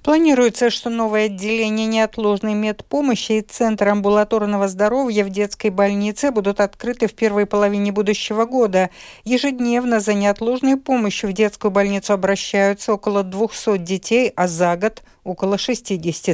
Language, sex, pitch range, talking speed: Russian, female, 195-235 Hz, 130 wpm